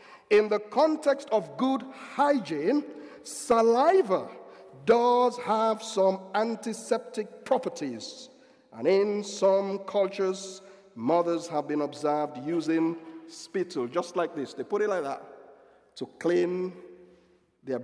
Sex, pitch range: male, 160-245 Hz